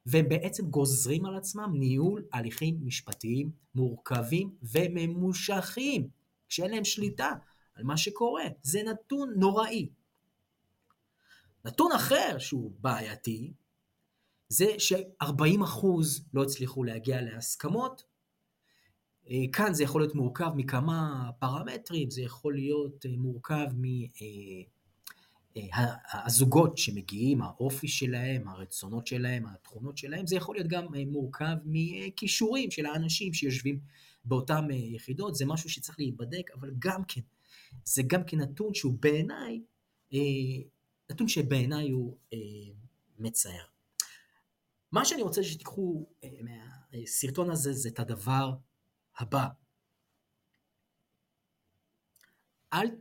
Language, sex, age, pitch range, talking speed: Hebrew, male, 30-49, 125-170 Hz, 100 wpm